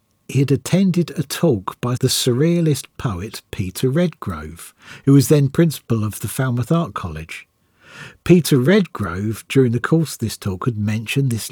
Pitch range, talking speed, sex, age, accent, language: 105-145 Hz, 160 wpm, male, 50-69, British, English